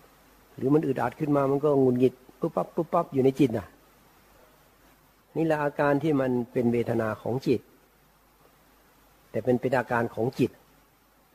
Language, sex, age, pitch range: Thai, male, 60-79, 115-150 Hz